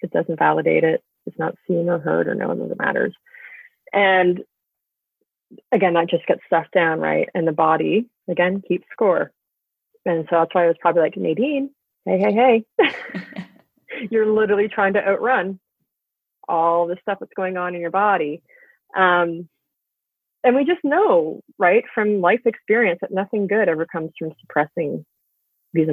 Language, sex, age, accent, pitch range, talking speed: English, female, 30-49, American, 165-210 Hz, 165 wpm